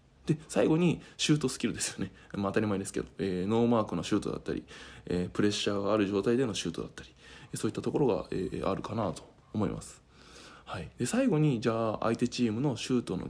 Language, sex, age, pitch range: Japanese, male, 20-39, 95-120 Hz